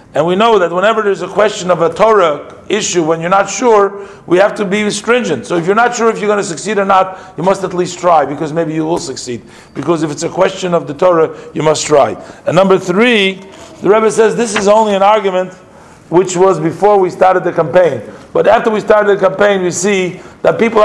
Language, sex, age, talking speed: English, male, 50-69, 235 wpm